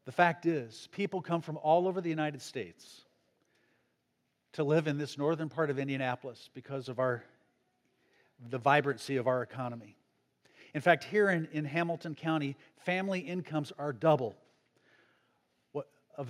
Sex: male